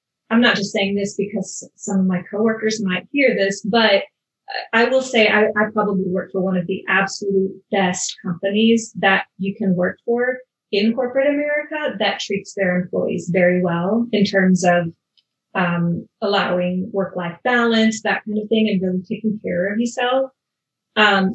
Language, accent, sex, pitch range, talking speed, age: English, American, female, 185-220 Hz, 170 wpm, 30-49